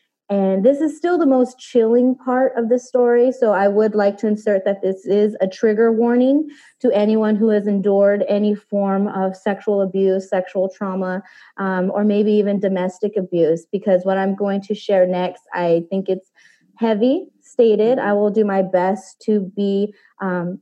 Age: 20-39